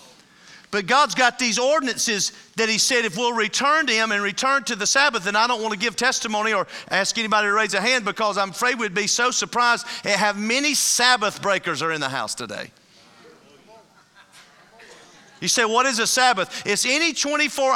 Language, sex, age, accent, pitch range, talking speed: English, male, 40-59, American, 215-285 Hz, 195 wpm